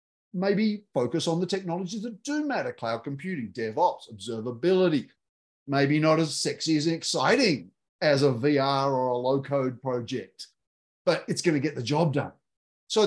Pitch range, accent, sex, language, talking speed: 135-195 Hz, Australian, male, English, 155 wpm